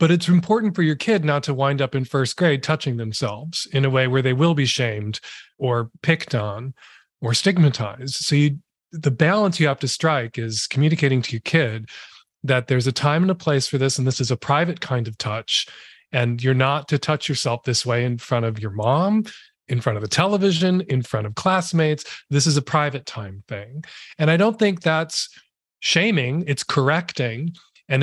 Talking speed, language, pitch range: 200 wpm, English, 125-160 Hz